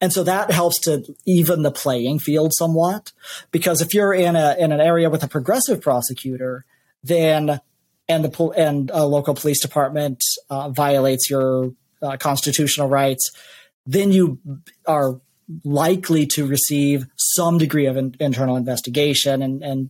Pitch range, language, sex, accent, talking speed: 135-165 Hz, English, male, American, 155 wpm